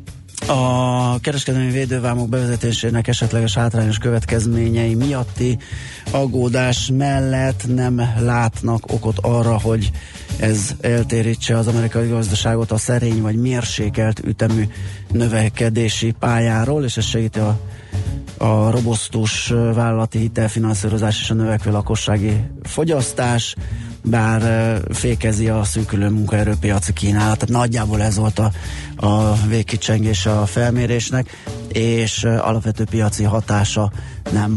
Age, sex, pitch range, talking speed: 30-49, male, 110-120 Hz, 105 wpm